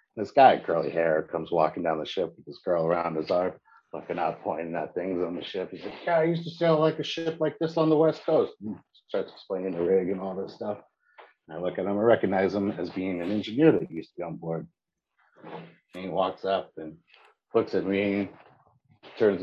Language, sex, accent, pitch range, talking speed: English, male, American, 95-140 Hz, 220 wpm